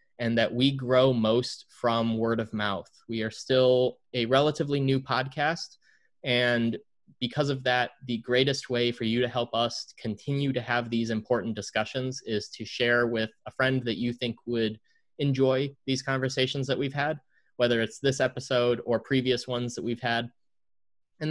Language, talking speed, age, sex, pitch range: English, 170 wpm, 20-39, male, 120-135 Hz